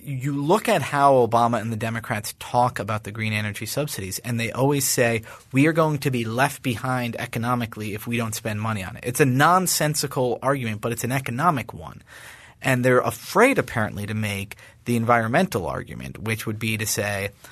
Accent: American